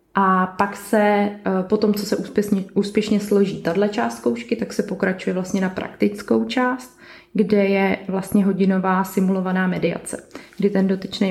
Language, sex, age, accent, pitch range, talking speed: Czech, female, 20-39, native, 185-215 Hz, 150 wpm